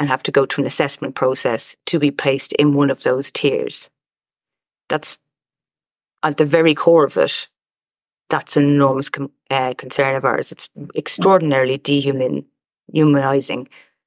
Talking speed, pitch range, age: 150 wpm, 140-150 Hz, 30-49